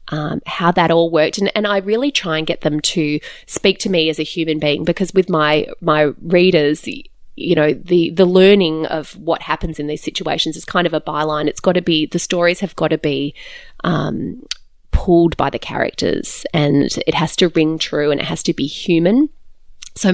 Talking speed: 210 wpm